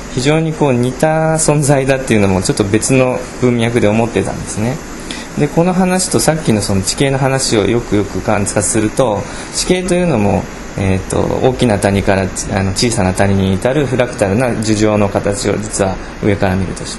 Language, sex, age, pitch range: Japanese, male, 20-39, 95-140 Hz